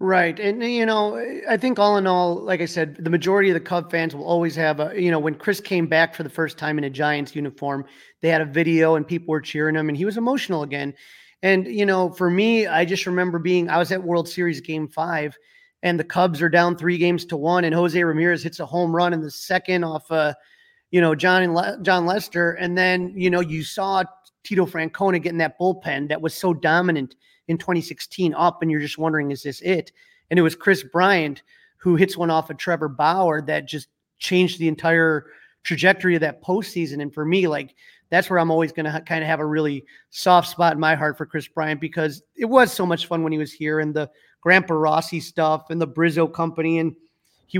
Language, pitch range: English, 155-180 Hz